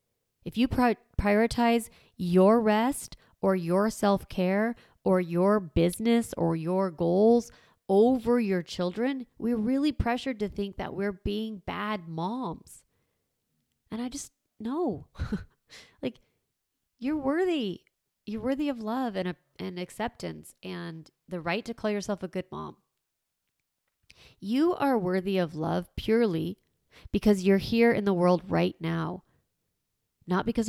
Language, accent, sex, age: English, American, female, 30-49